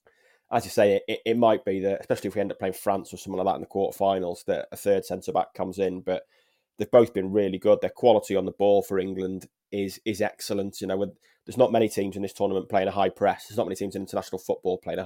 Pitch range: 95-100 Hz